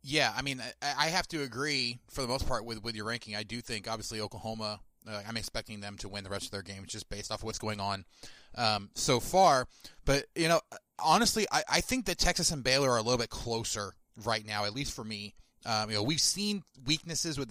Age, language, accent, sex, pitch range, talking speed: 30-49, English, American, male, 110-140 Hz, 240 wpm